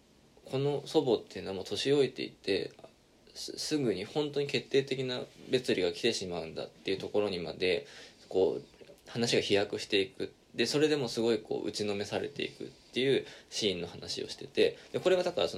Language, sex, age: Japanese, male, 20-39